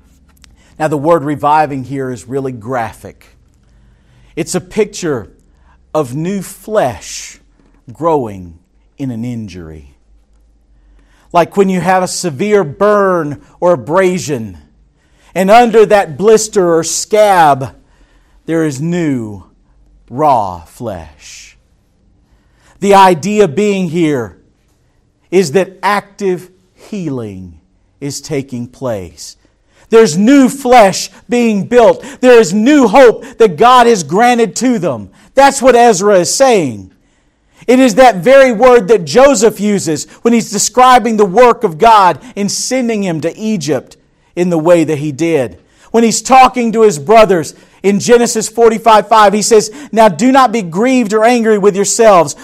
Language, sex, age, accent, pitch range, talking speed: English, male, 50-69, American, 140-225 Hz, 130 wpm